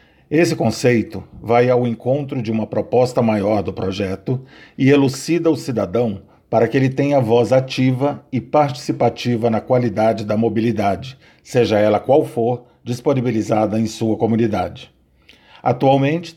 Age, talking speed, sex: 50-69, 130 wpm, male